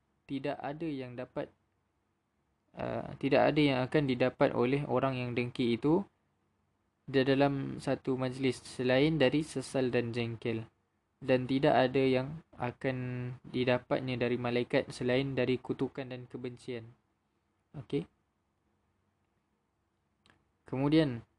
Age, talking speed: 20-39, 110 wpm